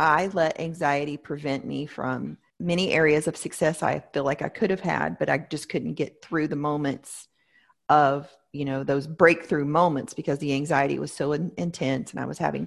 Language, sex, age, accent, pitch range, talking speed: English, female, 40-59, American, 155-200 Hz, 195 wpm